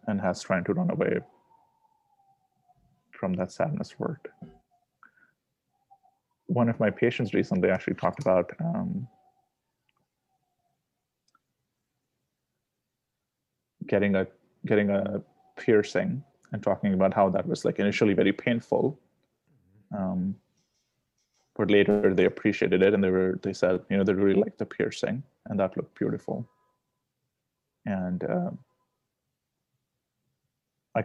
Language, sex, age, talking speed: English, male, 30-49, 115 wpm